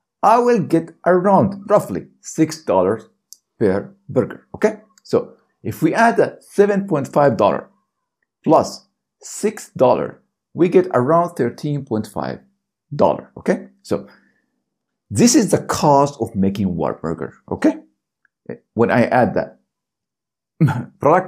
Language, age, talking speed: English, 50-69, 100 wpm